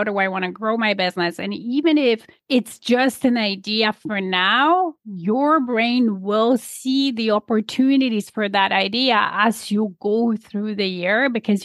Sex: female